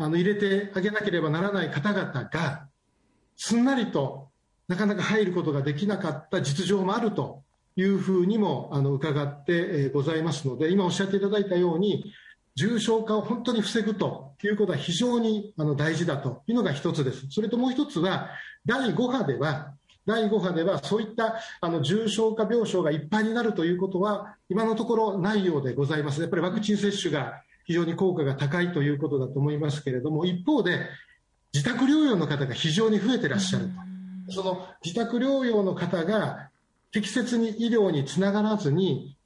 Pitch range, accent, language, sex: 150-210 Hz, native, Japanese, male